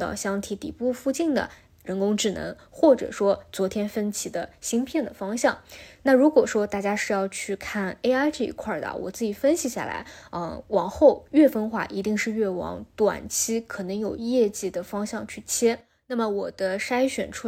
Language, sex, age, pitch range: Chinese, female, 20-39, 195-235 Hz